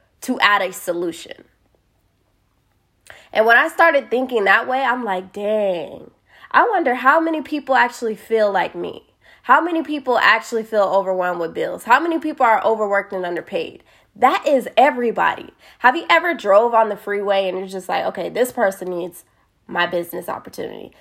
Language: English